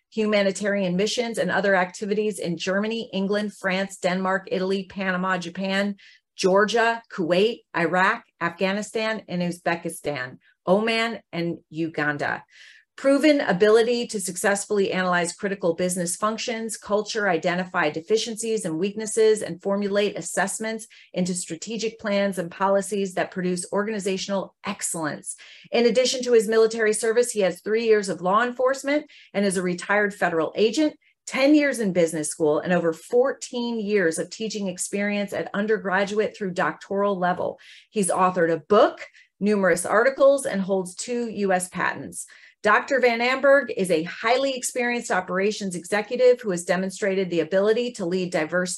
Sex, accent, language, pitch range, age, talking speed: female, American, English, 180-225 Hz, 30-49, 135 wpm